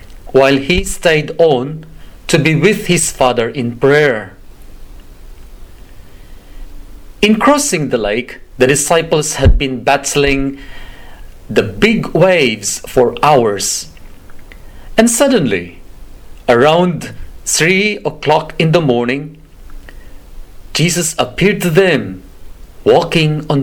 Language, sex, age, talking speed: English, male, 40-59, 100 wpm